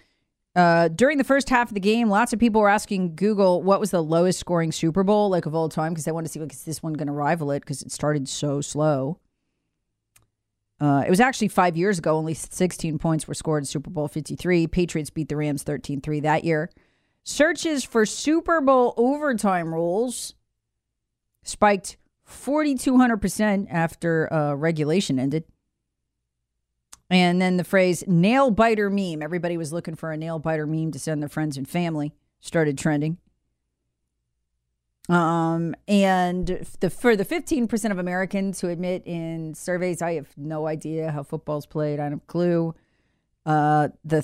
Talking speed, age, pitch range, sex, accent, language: 170 wpm, 40-59, 150-185 Hz, female, American, English